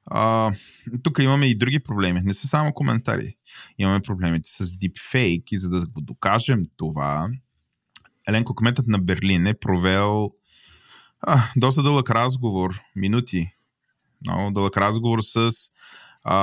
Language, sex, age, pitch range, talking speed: Bulgarian, male, 20-39, 90-115 Hz, 140 wpm